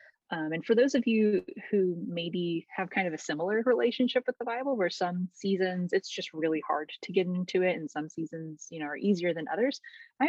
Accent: American